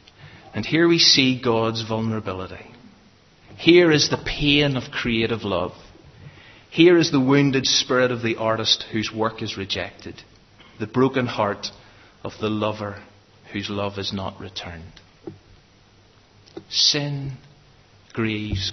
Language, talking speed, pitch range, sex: English, 120 wpm, 105-130 Hz, male